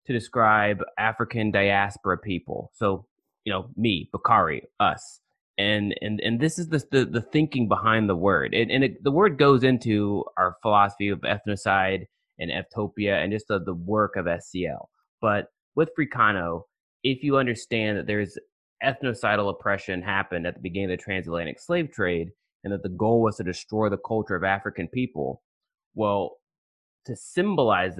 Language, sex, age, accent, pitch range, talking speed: English, male, 20-39, American, 95-120 Hz, 165 wpm